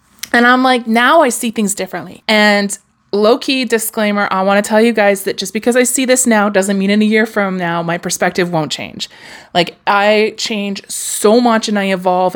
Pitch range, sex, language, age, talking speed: 190-230 Hz, female, English, 20-39, 215 wpm